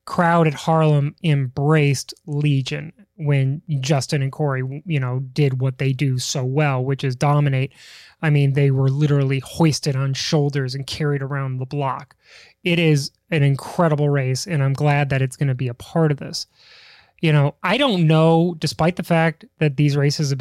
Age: 20-39